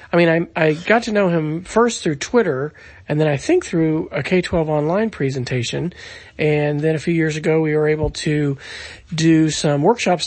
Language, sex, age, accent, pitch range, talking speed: English, male, 40-59, American, 150-180 Hz, 195 wpm